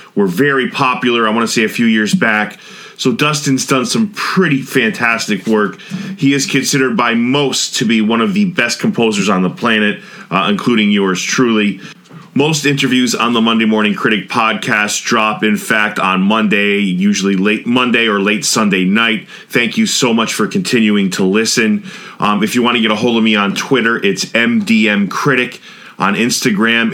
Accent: American